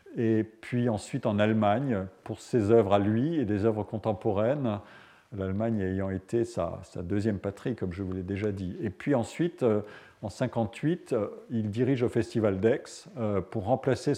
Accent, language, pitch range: French, French, 100-120 Hz